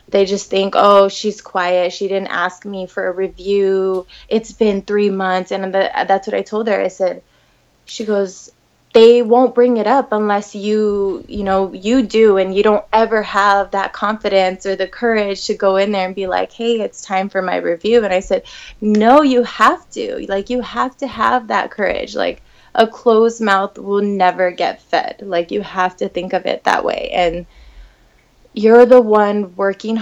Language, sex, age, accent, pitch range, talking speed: English, female, 20-39, American, 180-215 Hz, 195 wpm